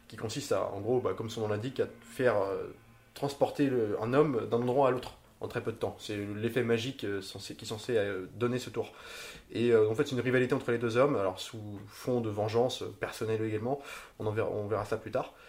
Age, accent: 20-39, French